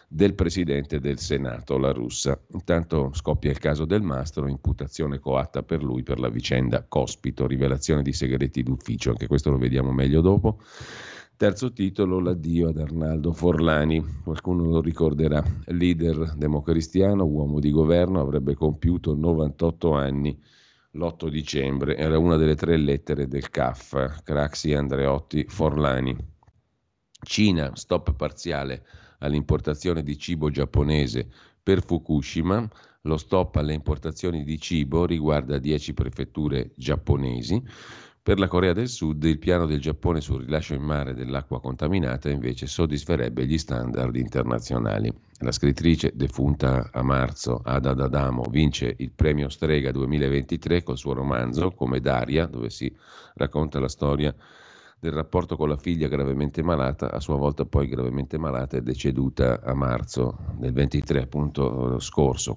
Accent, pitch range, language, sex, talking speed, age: native, 70-80 Hz, Italian, male, 135 wpm, 50-69